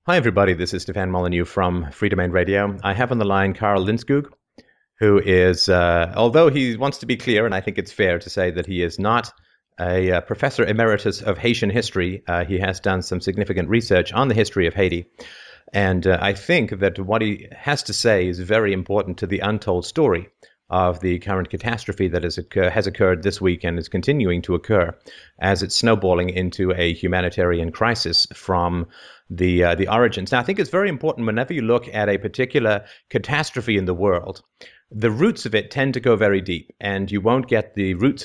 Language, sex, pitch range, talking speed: English, male, 90-110 Hz, 205 wpm